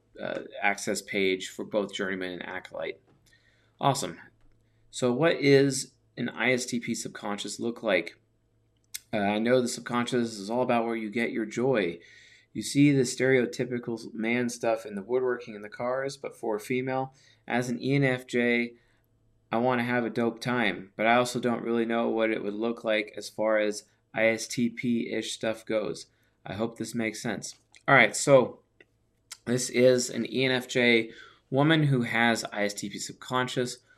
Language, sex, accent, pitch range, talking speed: English, male, American, 105-125 Hz, 160 wpm